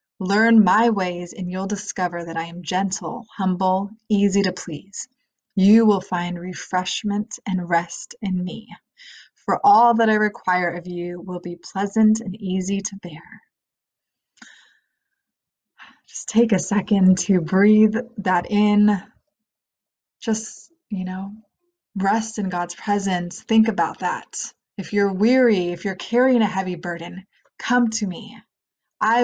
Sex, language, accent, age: female, English, American, 20-39